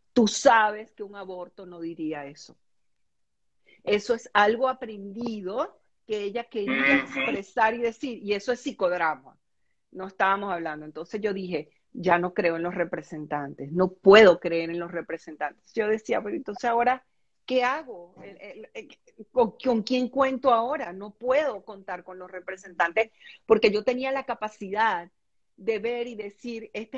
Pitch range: 165-235 Hz